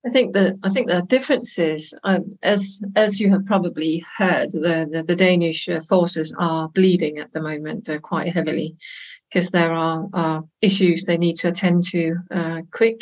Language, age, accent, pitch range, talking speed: English, 50-69, British, 175-205 Hz, 180 wpm